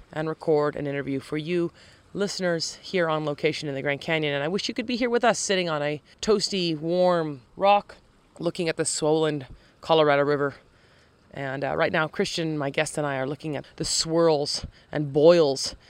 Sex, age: female, 30-49